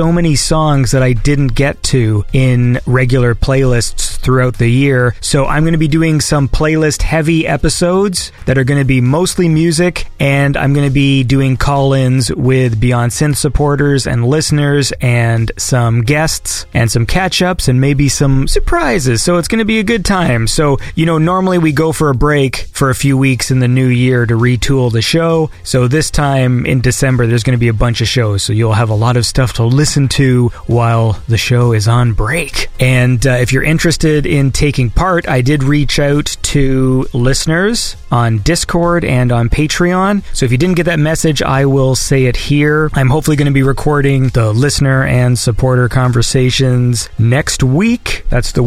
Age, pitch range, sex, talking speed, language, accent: 30-49, 125-150 Hz, male, 195 wpm, English, American